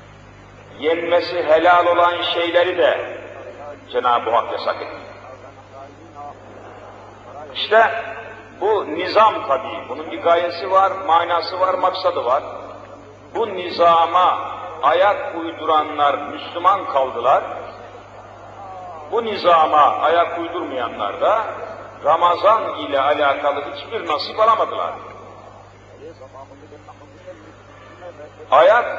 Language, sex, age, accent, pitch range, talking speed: Turkish, male, 50-69, native, 145-190 Hz, 75 wpm